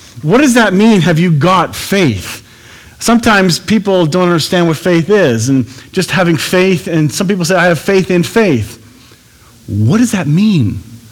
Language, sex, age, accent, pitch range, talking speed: English, male, 40-59, American, 125-185 Hz, 175 wpm